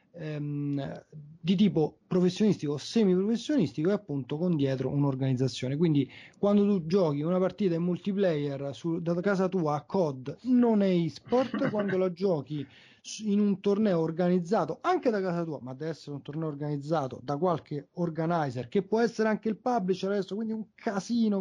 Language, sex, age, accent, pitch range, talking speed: Italian, male, 30-49, native, 150-190 Hz, 155 wpm